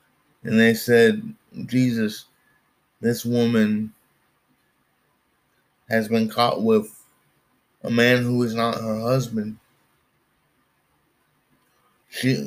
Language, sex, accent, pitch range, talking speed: English, male, American, 115-135 Hz, 85 wpm